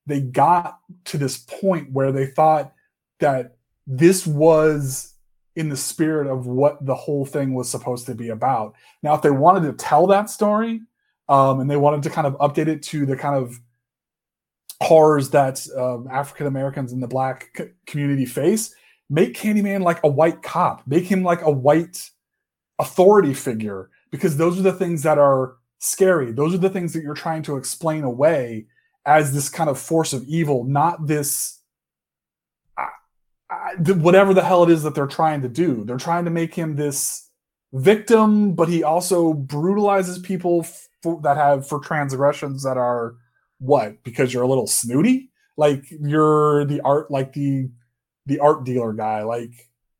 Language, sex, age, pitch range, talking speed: English, male, 30-49, 130-170 Hz, 170 wpm